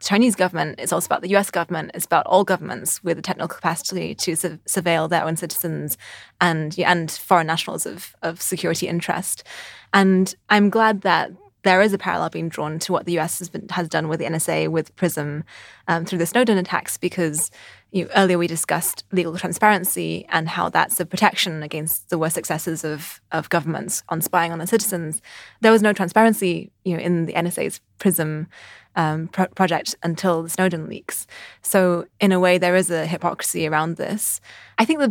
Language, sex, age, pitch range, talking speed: English, female, 20-39, 165-190 Hz, 185 wpm